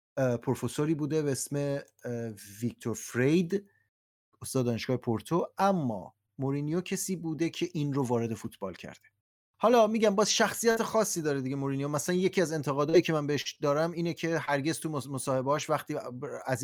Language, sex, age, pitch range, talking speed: Persian, male, 30-49, 120-160 Hz, 150 wpm